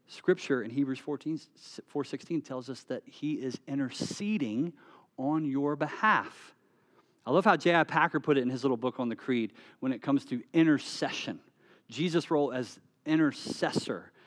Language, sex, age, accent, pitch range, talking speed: English, male, 40-59, American, 130-180 Hz, 160 wpm